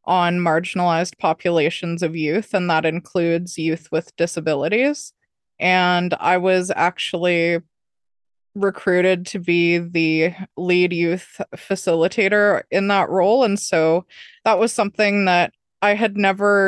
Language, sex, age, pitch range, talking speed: English, female, 20-39, 170-205 Hz, 120 wpm